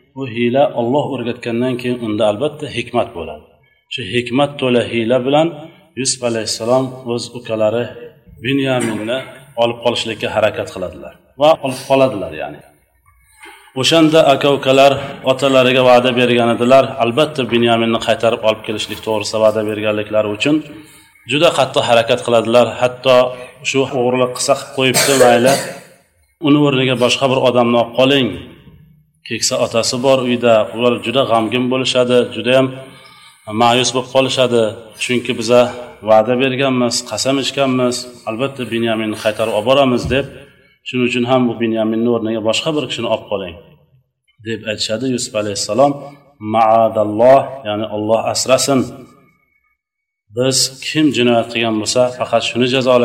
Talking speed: 105 wpm